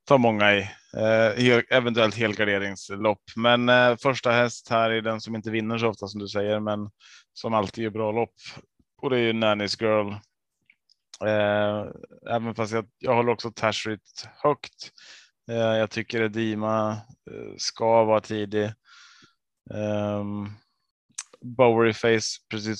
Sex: male